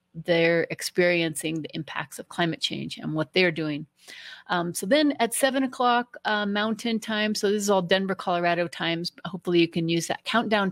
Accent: American